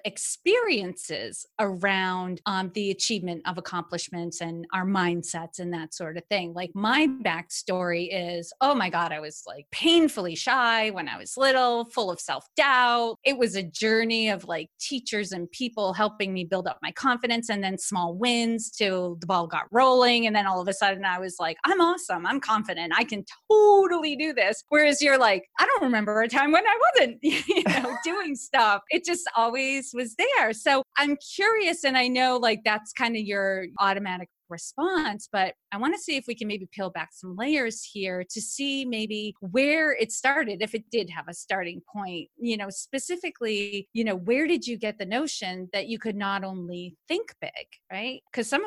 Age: 30-49